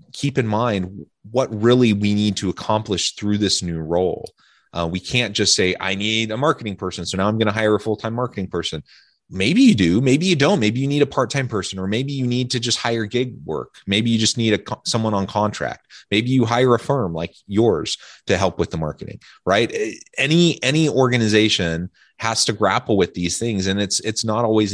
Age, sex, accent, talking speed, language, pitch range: 30-49, male, American, 215 wpm, English, 90-120 Hz